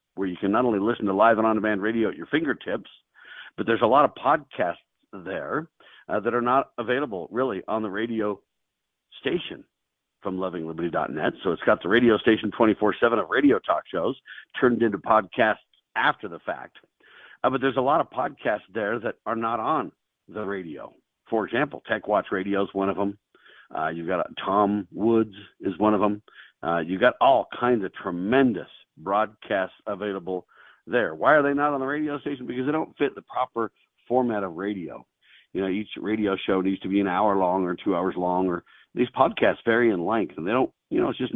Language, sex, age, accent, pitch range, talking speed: English, male, 50-69, American, 100-125 Hz, 200 wpm